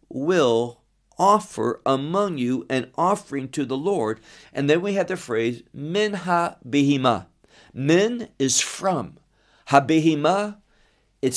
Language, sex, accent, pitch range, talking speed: English, male, American, 125-170 Hz, 120 wpm